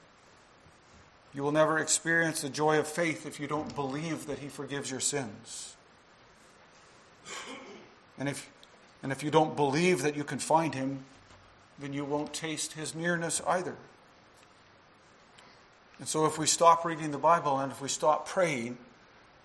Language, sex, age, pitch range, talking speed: English, male, 50-69, 140-180 Hz, 150 wpm